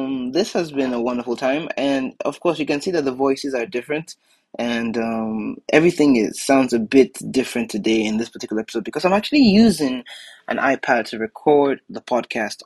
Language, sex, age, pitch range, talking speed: English, male, 20-39, 115-140 Hz, 195 wpm